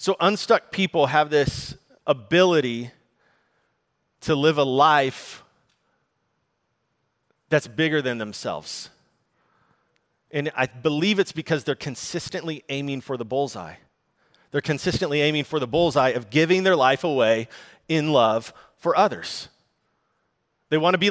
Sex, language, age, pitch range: male, English, 30-49, 135-175 Hz